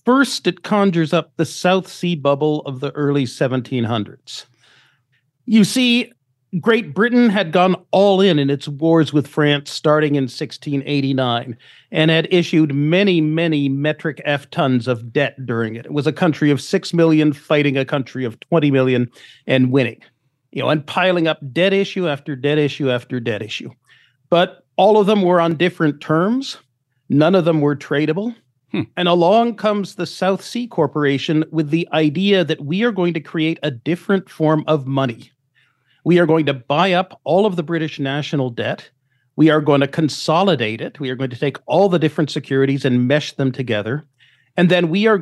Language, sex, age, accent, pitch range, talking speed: English, male, 40-59, American, 135-175 Hz, 180 wpm